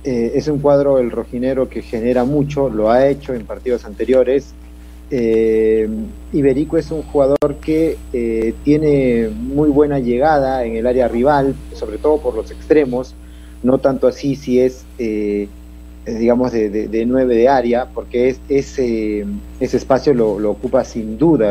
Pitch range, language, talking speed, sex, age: 110-145 Hz, Spanish, 160 wpm, male, 30-49